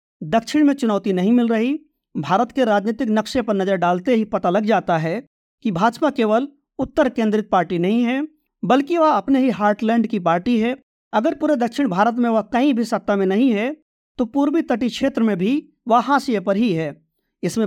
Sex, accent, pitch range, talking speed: male, Indian, 200-260 Hz, 190 wpm